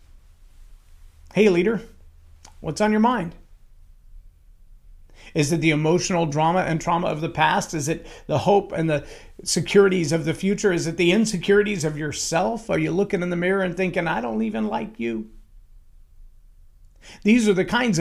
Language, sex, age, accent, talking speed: English, male, 40-59, American, 165 wpm